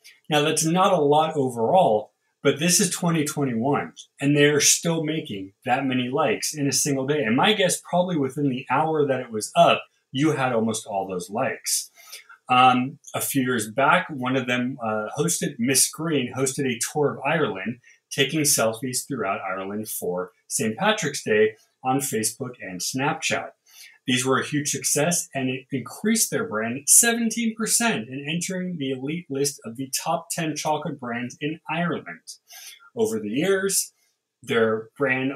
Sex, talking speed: male, 165 wpm